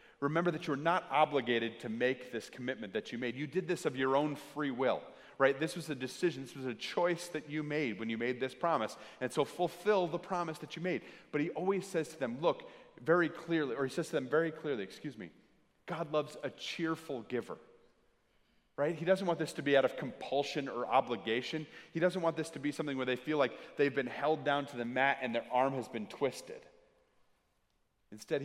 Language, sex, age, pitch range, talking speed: English, male, 30-49, 120-160 Hz, 220 wpm